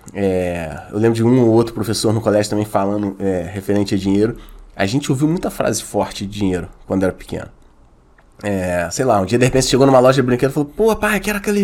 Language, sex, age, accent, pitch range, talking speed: Portuguese, male, 20-39, Brazilian, 95-140 Hz, 240 wpm